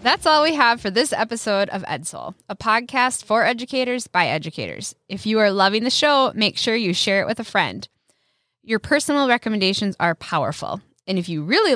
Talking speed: 195 wpm